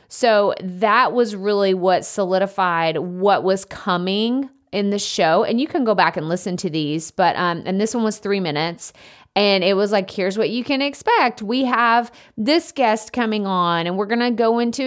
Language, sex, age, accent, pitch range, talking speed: English, female, 30-49, American, 185-235 Hz, 200 wpm